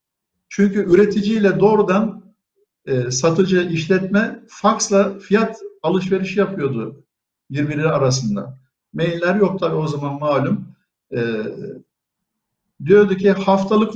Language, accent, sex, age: Turkish, native, male, 60-79